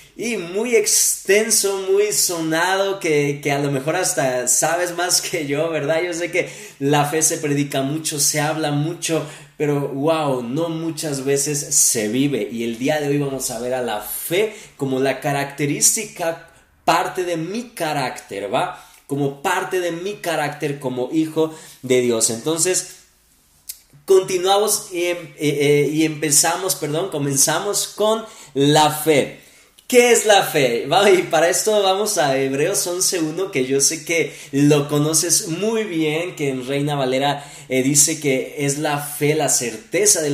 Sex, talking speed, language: male, 160 wpm, Spanish